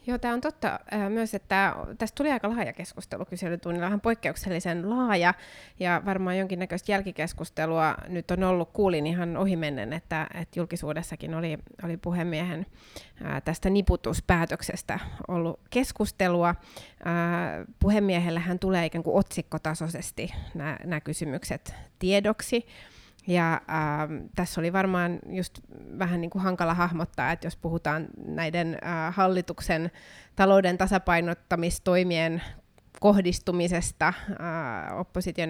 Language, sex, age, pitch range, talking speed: Finnish, female, 30-49, 165-190 Hz, 110 wpm